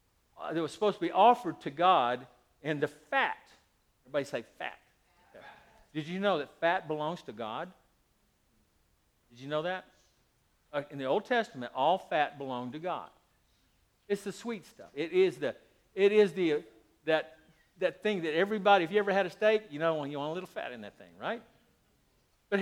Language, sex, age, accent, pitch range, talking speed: English, male, 60-79, American, 155-215 Hz, 190 wpm